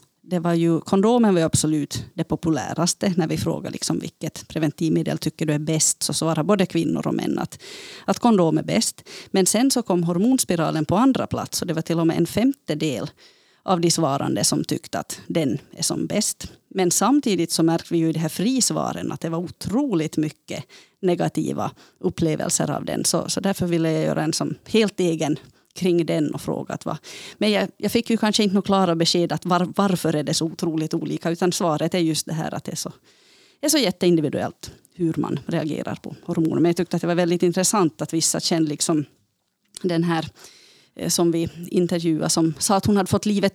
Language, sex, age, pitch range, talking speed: Swedish, female, 30-49, 160-195 Hz, 205 wpm